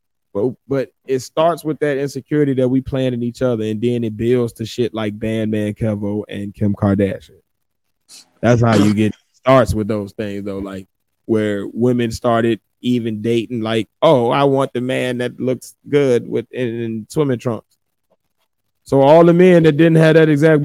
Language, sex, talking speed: English, male, 180 wpm